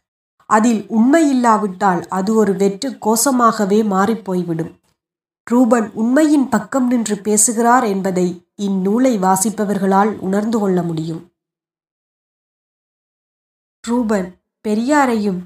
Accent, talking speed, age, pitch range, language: native, 80 wpm, 20-39, 185-235 Hz, Tamil